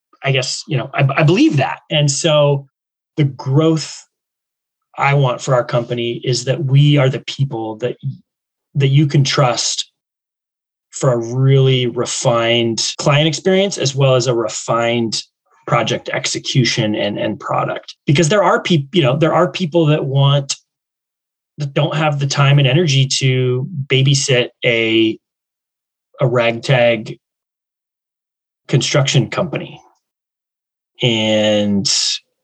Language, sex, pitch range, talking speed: English, male, 120-150 Hz, 130 wpm